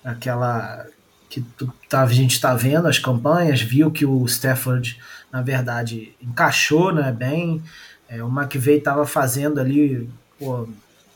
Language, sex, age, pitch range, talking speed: Portuguese, male, 20-39, 120-150 Hz, 135 wpm